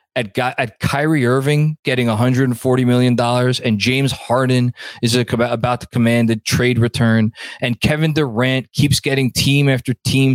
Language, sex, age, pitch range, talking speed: English, male, 20-39, 125-170 Hz, 160 wpm